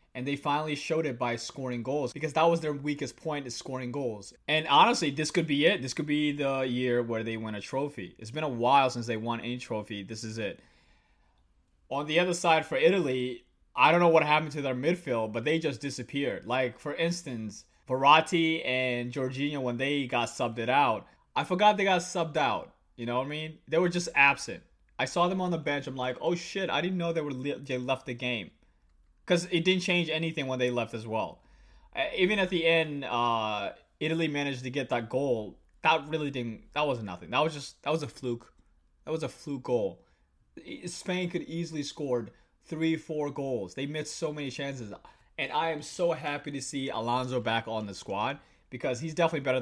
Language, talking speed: English, 215 wpm